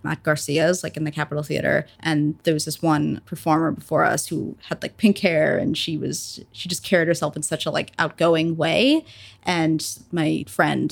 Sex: female